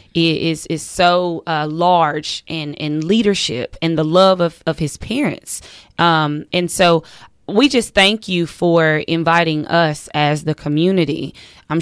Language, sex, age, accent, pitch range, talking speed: English, female, 20-39, American, 155-185 Hz, 150 wpm